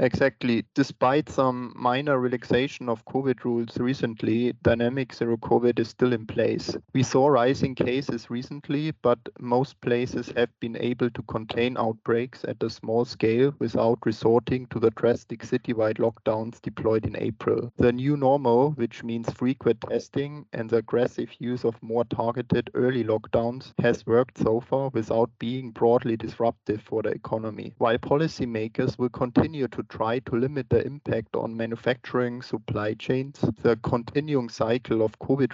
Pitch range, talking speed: 115-130 Hz, 150 wpm